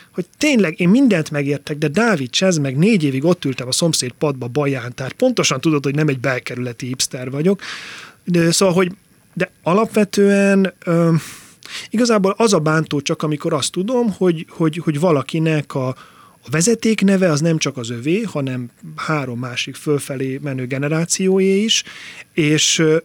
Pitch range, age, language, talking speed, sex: 140-180 Hz, 30-49, Hungarian, 155 wpm, male